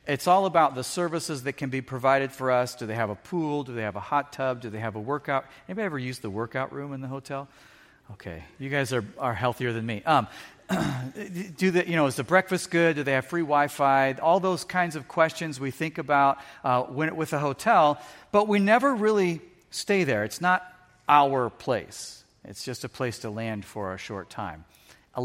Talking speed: 220 wpm